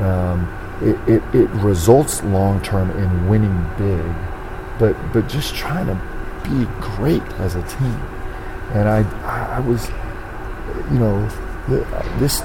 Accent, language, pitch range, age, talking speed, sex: American, English, 95-120 Hz, 40-59, 125 wpm, male